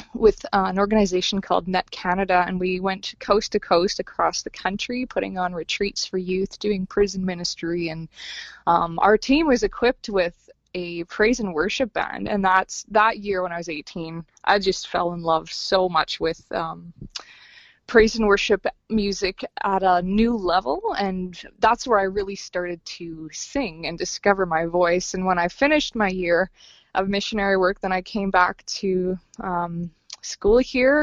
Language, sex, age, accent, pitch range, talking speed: English, female, 20-39, American, 180-215 Hz, 170 wpm